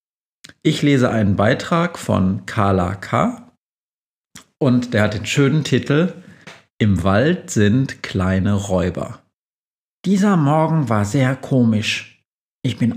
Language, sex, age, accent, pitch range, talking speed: German, male, 50-69, German, 115-150 Hz, 115 wpm